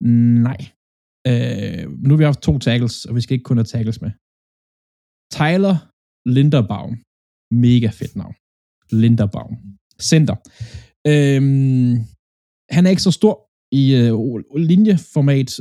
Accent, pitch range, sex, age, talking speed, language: native, 110-140 Hz, male, 20-39, 125 wpm, Danish